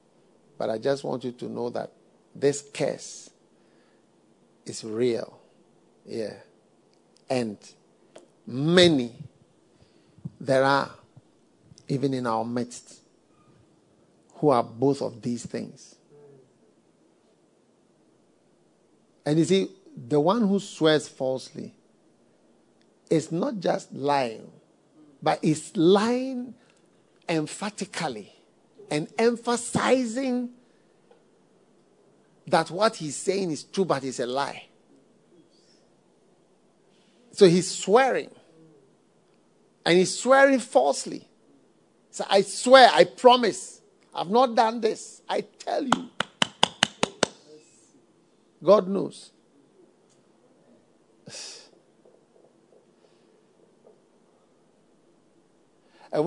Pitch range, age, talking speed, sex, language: 140-210 Hz, 50-69, 80 wpm, male, English